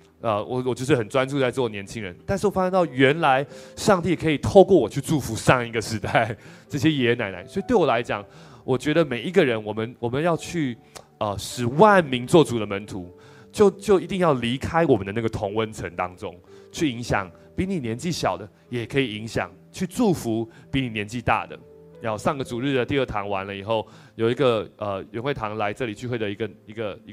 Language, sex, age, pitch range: Chinese, male, 20-39, 105-140 Hz